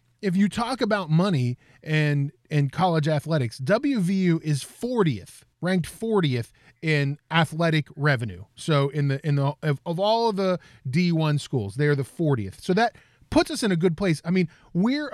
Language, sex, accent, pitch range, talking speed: English, male, American, 135-185 Hz, 170 wpm